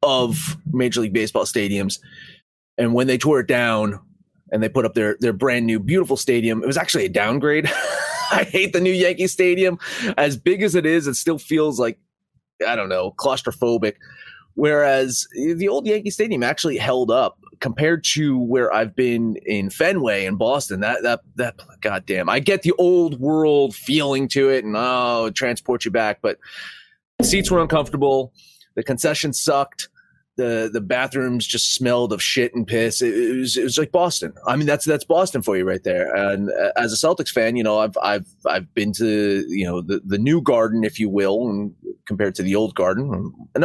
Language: English